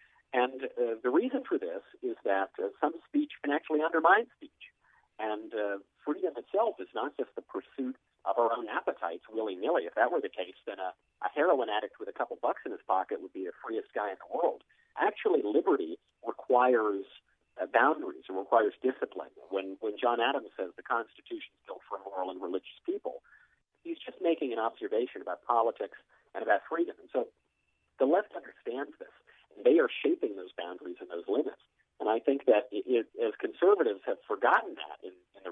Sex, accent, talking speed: male, American, 190 wpm